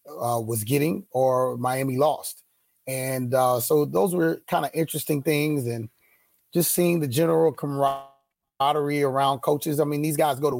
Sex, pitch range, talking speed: male, 125-145 Hz, 165 wpm